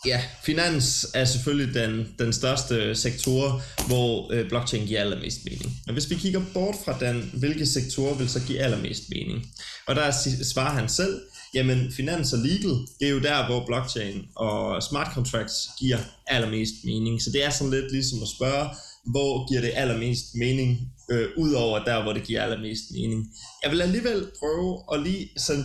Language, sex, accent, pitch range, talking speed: Danish, male, native, 115-145 Hz, 180 wpm